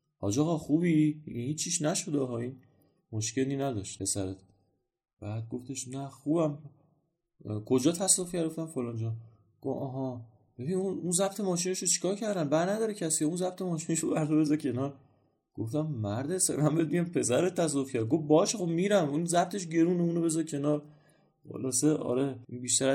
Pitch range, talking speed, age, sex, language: 100-135 Hz, 135 wpm, 30-49, male, Persian